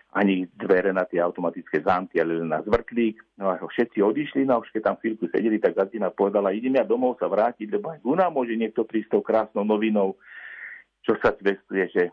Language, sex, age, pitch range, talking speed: Slovak, male, 50-69, 100-130 Hz, 200 wpm